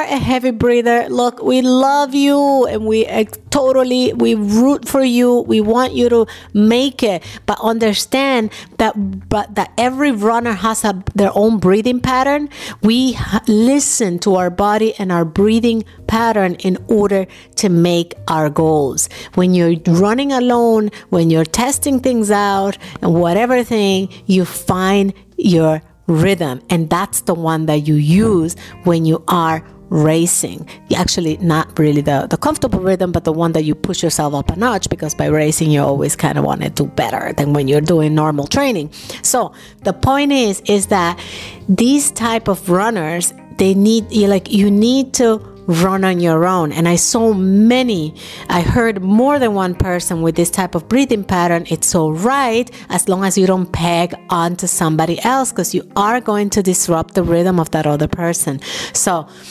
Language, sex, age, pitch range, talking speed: English, female, 50-69, 170-230 Hz, 170 wpm